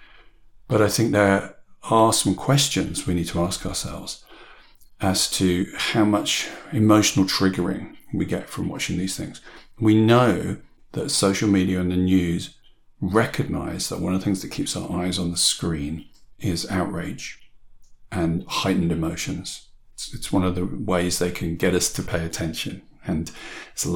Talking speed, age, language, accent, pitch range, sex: 160 wpm, 50-69, English, British, 90-105 Hz, male